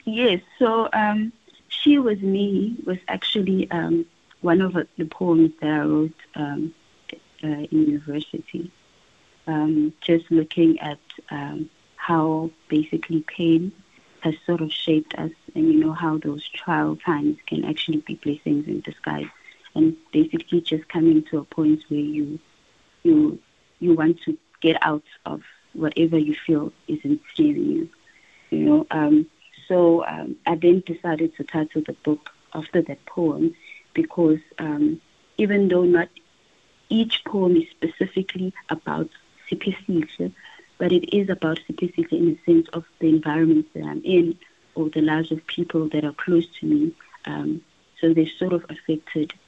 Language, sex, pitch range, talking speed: English, female, 155-200 Hz, 150 wpm